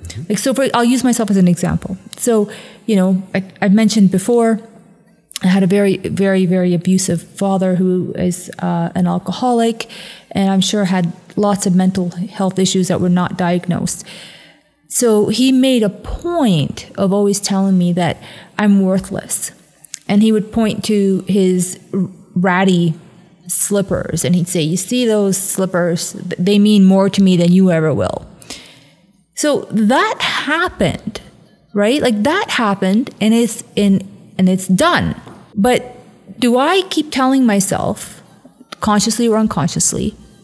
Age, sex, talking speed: 30-49, female, 150 wpm